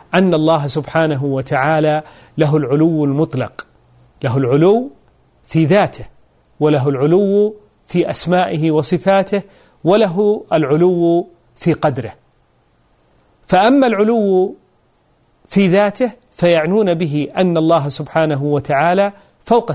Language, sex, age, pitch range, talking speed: Arabic, male, 40-59, 145-195 Hz, 95 wpm